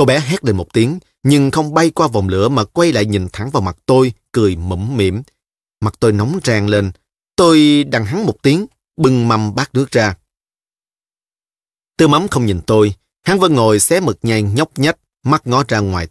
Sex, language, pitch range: male, Vietnamese, 105-145 Hz